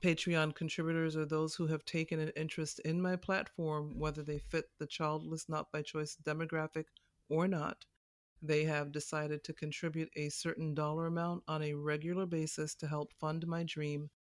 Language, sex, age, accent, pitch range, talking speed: English, female, 40-59, American, 150-165 Hz, 175 wpm